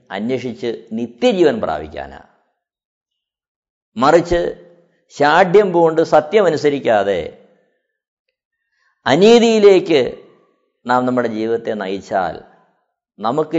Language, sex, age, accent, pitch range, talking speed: Malayalam, male, 50-69, native, 120-200 Hz, 55 wpm